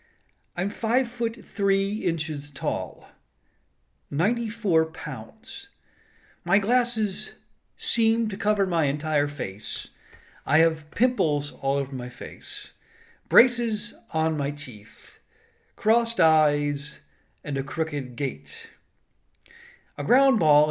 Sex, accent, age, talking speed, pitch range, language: male, American, 50-69, 105 wpm, 140-195 Hz, English